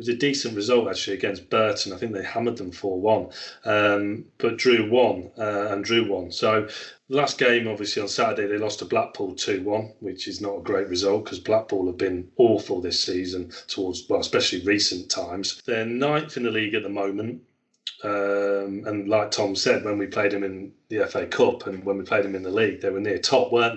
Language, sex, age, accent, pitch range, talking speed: English, male, 30-49, British, 100-120 Hz, 215 wpm